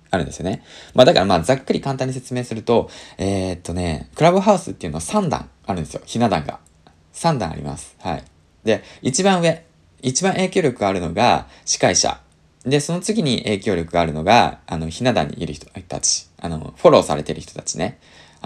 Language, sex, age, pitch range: Japanese, male, 20-39, 80-130 Hz